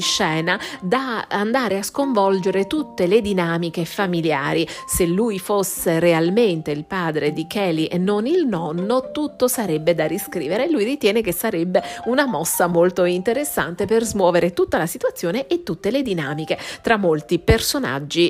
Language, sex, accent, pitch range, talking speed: Italian, female, native, 165-230 Hz, 150 wpm